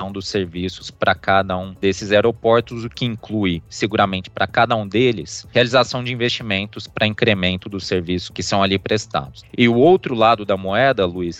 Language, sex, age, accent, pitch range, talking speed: Portuguese, male, 20-39, Brazilian, 100-125 Hz, 175 wpm